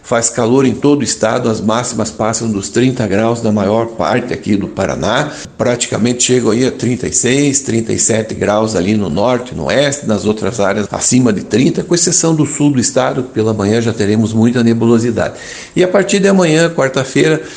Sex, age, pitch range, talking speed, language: male, 60-79, 110-135 Hz, 185 wpm, Portuguese